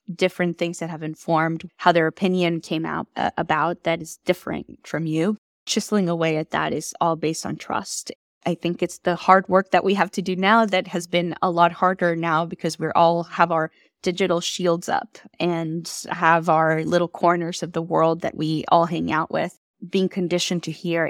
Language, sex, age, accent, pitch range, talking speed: English, female, 10-29, American, 160-180 Hz, 200 wpm